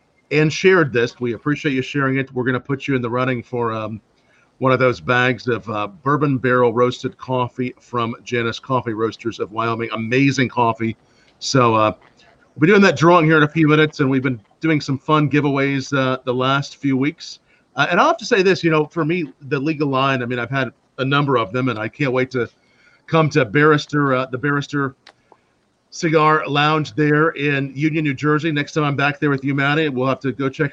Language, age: English, 40-59